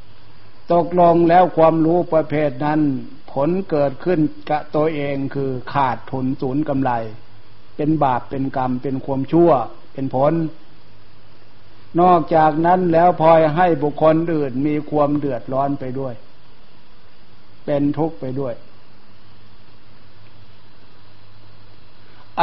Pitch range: 110-160 Hz